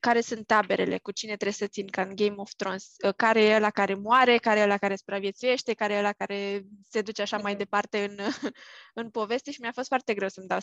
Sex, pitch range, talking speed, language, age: female, 200-235 Hz, 235 wpm, English, 20-39